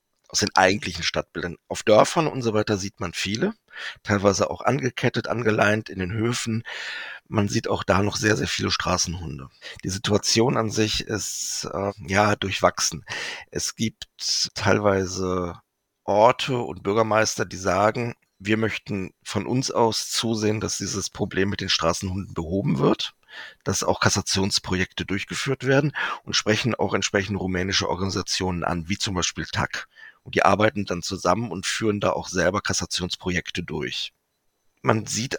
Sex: male